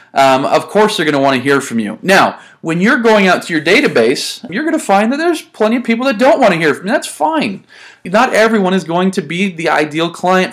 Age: 30-49